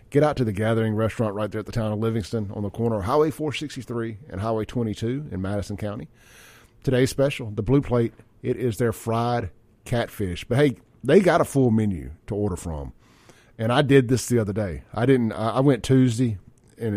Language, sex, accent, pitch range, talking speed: English, male, American, 105-125 Hz, 205 wpm